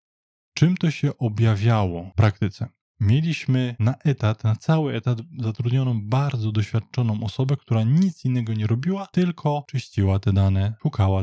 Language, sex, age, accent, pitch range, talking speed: Polish, male, 20-39, native, 105-135 Hz, 140 wpm